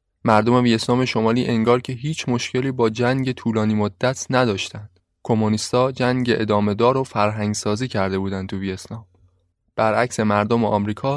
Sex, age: male, 20-39